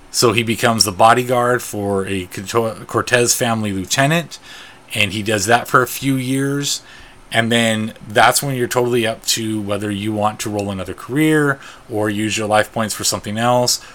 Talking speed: 175 wpm